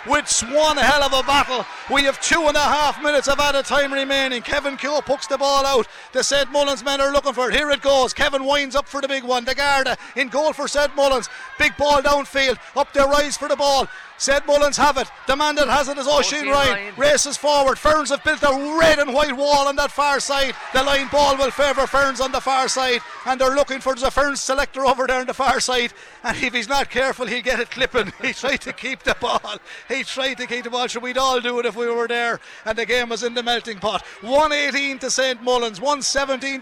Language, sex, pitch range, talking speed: English, male, 260-285 Hz, 245 wpm